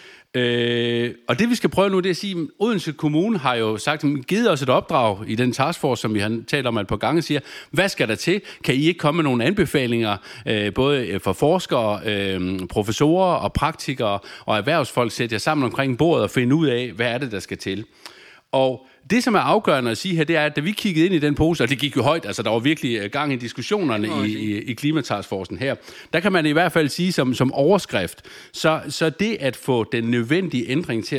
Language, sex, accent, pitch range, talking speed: Danish, male, native, 115-160 Hz, 235 wpm